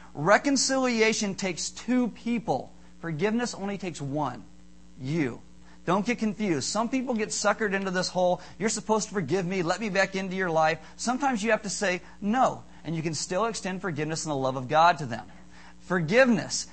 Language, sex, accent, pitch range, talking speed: English, male, American, 165-225 Hz, 180 wpm